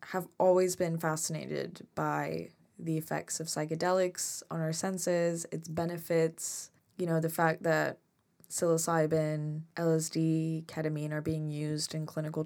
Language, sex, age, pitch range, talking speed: English, female, 20-39, 155-180 Hz, 130 wpm